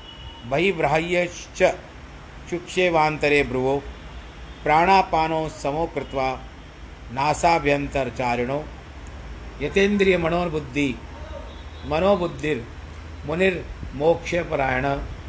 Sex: male